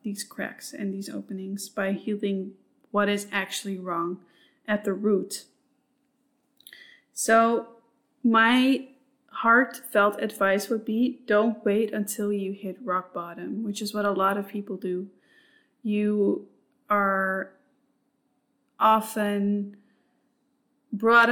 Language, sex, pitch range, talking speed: English, female, 200-245 Hz, 110 wpm